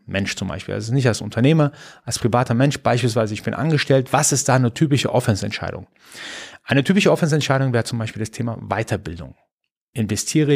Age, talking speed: 30-49, 170 wpm